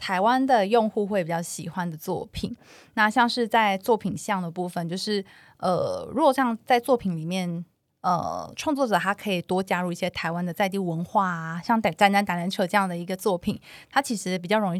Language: Chinese